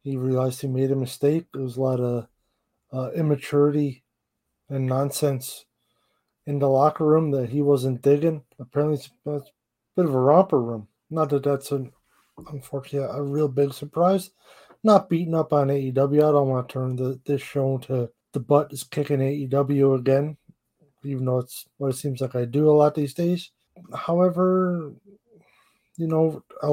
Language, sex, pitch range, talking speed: English, male, 130-155 Hz, 175 wpm